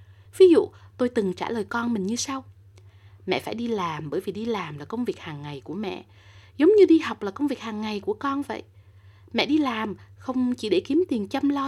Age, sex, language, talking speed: 20-39, female, Vietnamese, 240 wpm